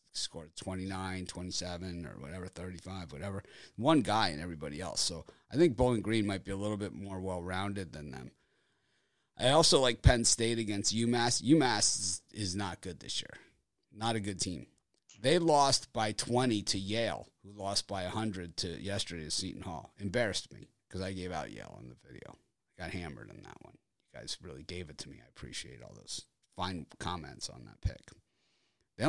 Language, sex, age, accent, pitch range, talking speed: English, male, 30-49, American, 90-115 Hz, 185 wpm